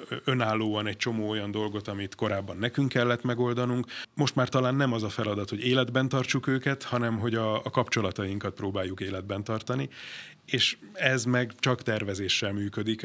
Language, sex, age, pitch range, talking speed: Hungarian, male, 30-49, 105-125 Hz, 160 wpm